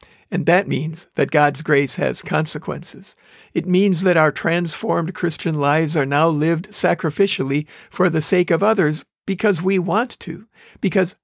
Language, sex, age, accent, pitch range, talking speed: English, male, 50-69, American, 155-195 Hz, 155 wpm